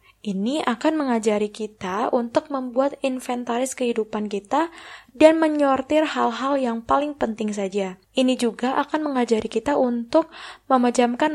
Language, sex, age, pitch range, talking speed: Indonesian, female, 20-39, 215-270 Hz, 120 wpm